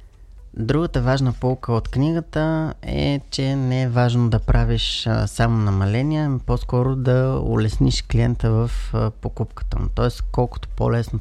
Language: Bulgarian